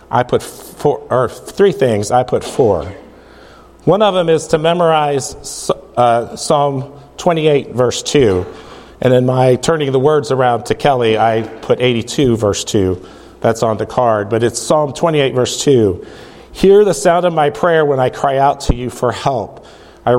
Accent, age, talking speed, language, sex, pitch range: American, 40-59, 175 wpm, English, male, 115-150 Hz